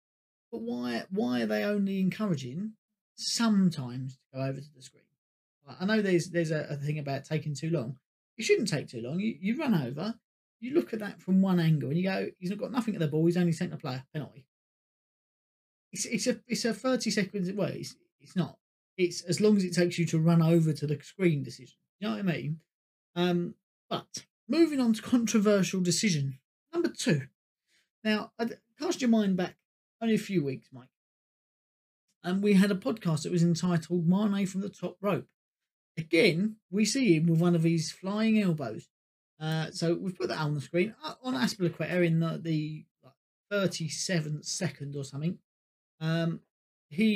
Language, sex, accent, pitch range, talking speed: English, male, British, 160-215 Hz, 190 wpm